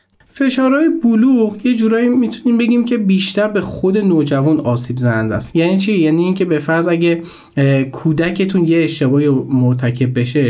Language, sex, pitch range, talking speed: Persian, male, 130-165 Hz, 150 wpm